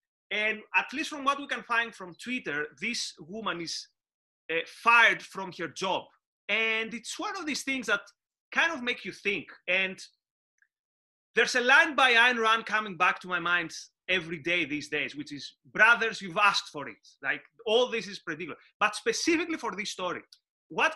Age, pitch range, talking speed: 30-49, 180-245 Hz, 185 wpm